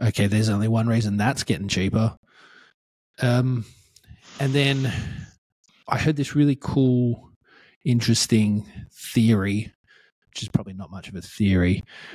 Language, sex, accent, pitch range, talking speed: English, male, Australian, 100-120 Hz, 130 wpm